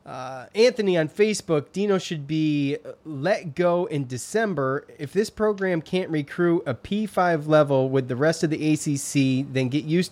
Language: English